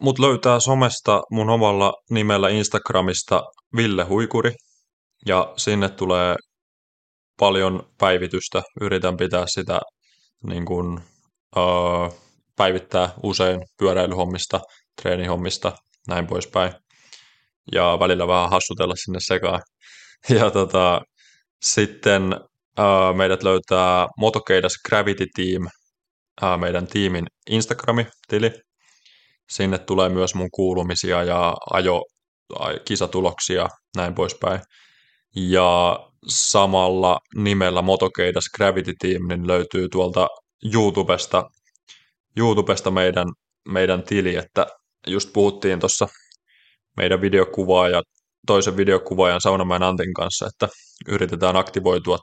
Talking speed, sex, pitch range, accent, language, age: 95 wpm, male, 90-100 Hz, native, Finnish, 20-39